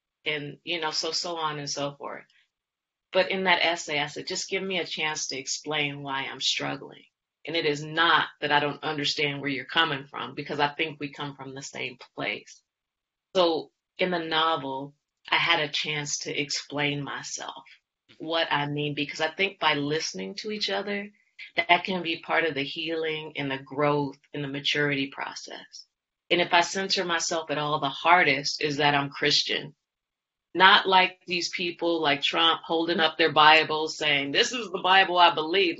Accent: American